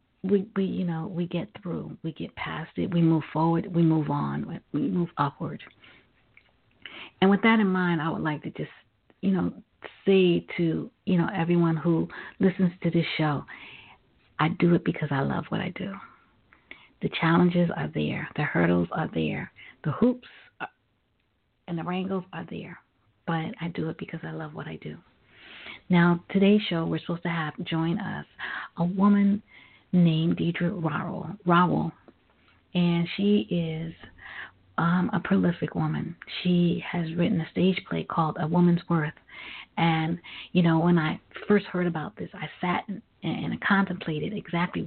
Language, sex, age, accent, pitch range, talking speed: English, female, 50-69, American, 160-185 Hz, 165 wpm